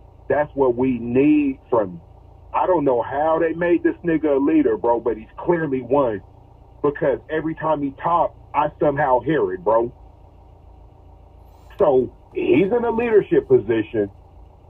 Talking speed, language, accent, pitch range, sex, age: 145 wpm, English, American, 95-160 Hz, male, 40-59